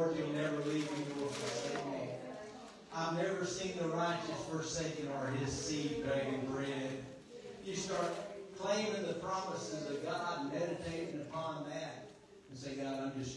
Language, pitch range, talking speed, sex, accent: English, 140-205 Hz, 145 wpm, male, American